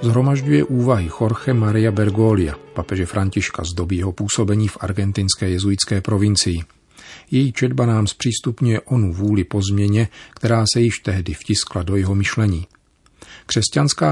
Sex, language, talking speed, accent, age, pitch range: male, Czech, 135 wpm, native, 40-59, 95-115 Hz